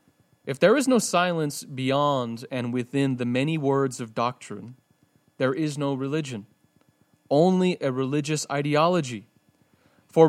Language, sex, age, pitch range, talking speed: English, male, 30-49, 120-145 Hz, 130 wpm